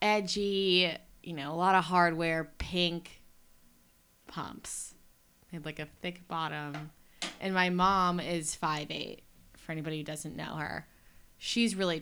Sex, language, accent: female, English, American